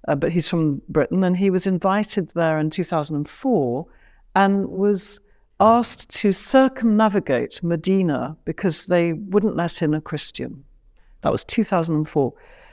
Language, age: English, 60-79